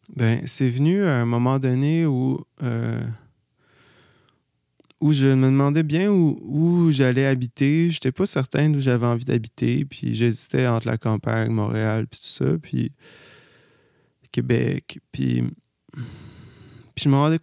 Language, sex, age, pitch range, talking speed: French, male, 20-39, 120-150 Hz, 145 wpm